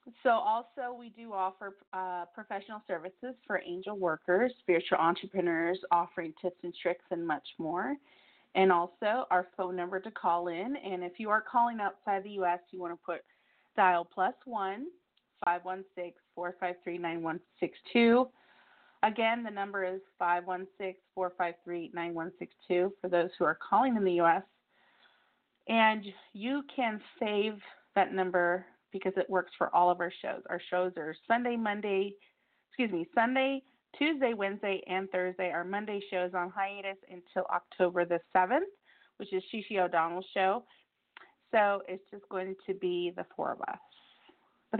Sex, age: female, 30-49